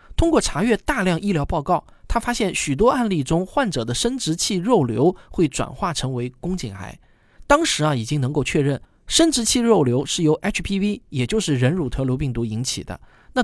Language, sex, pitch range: Chinese, male, 130-200 Hz